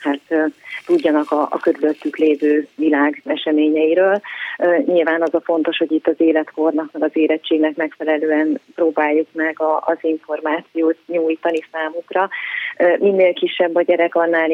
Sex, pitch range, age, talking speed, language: female, 155-175 Hz, 30-49, 135 wpm, Hungarian